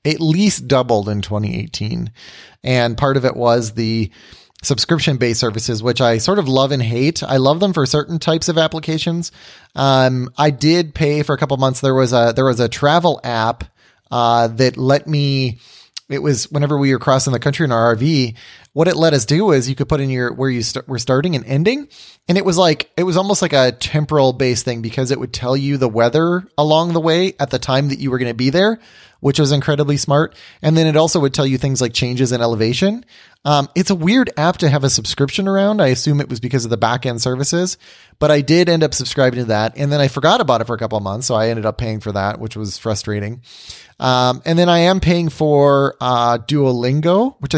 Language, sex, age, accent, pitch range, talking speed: English, male, 30-49, American, 120-155 Hz, 225 wpm